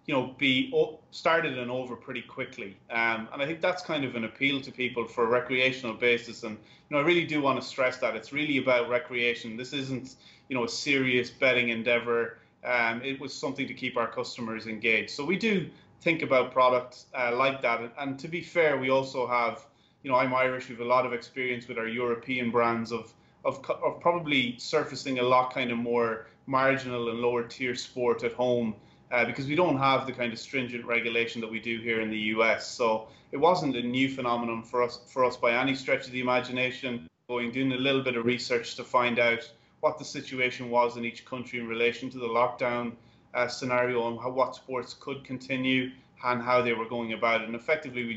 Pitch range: 115-130 Hz